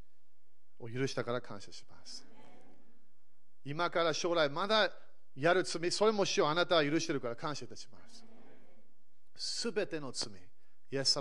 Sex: male